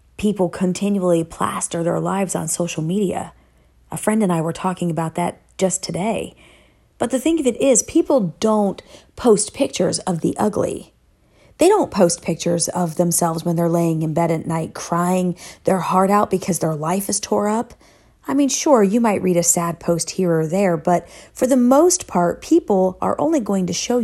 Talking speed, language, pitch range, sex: 190 wpm, English, 170-230 Hz, female